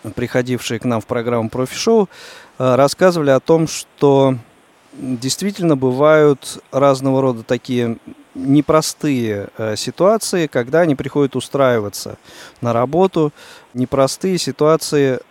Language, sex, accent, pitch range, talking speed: Russian, male, native, 120-150 Hz, 100 wpm